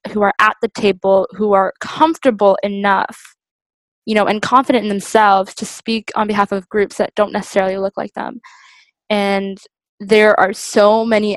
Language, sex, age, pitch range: English, female, 10-29, 195-225 Hz